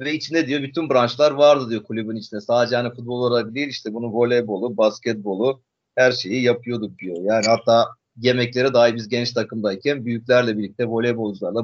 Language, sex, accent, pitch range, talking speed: Turkish, male, native, 120-170 Hz, 165 wpm